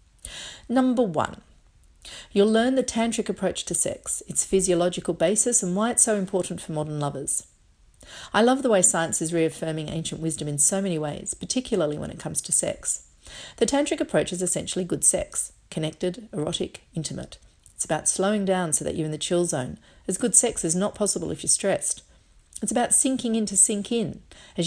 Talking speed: 185 wpm